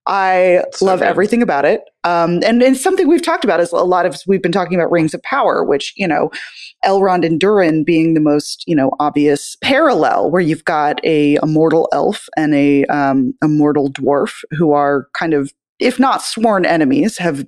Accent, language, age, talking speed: American, English, 20-39, 200 wpm